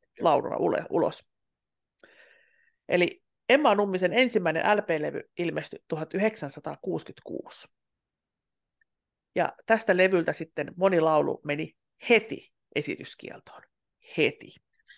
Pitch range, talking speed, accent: 175-255 Hz, 70 wpm, native